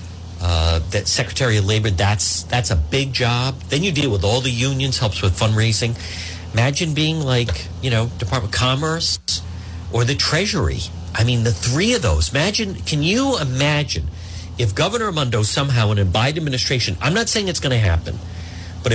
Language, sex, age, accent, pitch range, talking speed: English, male, 50-69, American, 90-135 Hz, 180 wpm